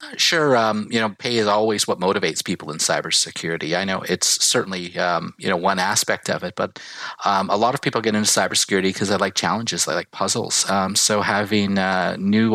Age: 30-49